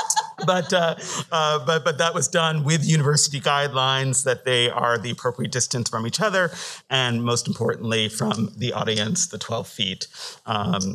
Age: 50-69